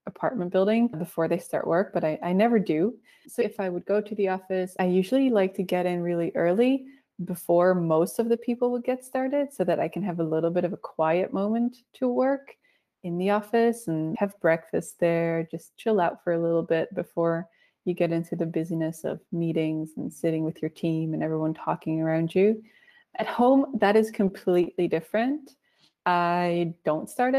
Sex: female